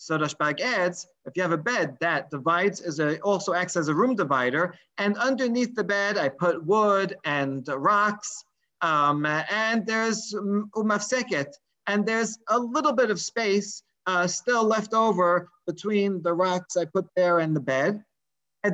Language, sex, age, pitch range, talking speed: English, male, 40-59, 155-210 Hz, 165 wpm